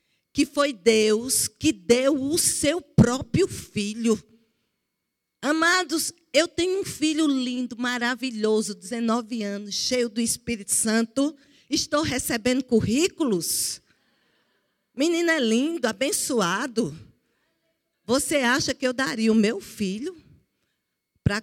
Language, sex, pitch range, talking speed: Portuguese, female, 205-280 Hz, 105 wpm